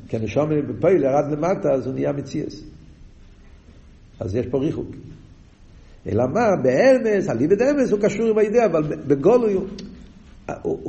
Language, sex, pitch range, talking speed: Hebrew, male, 155-210 Hz, 140 wpm